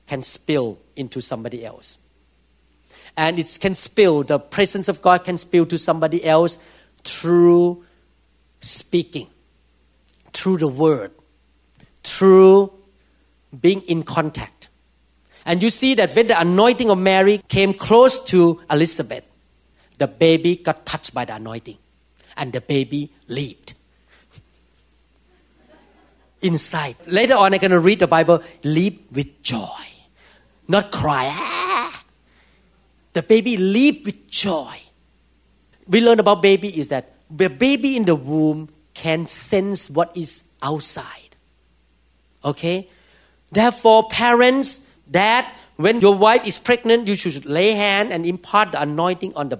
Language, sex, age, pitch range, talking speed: English, male, 40-59, 120-195 Hz, 130 wpm